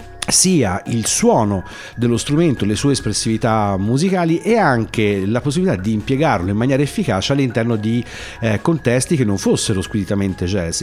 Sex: male